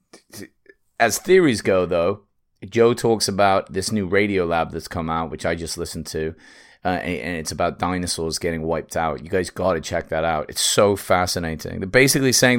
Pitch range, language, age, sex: 85-105 Hz, English, 30-49, male